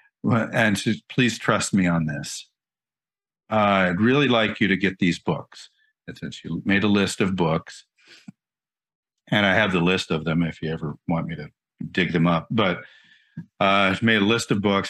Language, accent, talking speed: English, American, 195 wpm